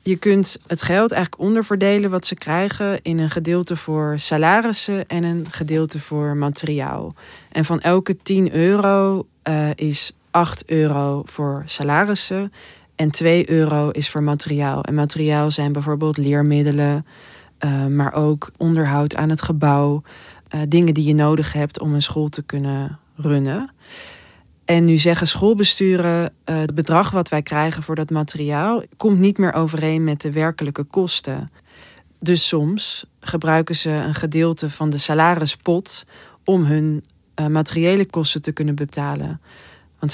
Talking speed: 150 wpm